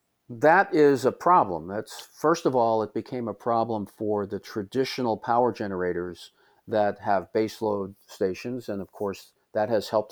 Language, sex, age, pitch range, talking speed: English, male, 50-69, 100-125 Hz, 160 wpm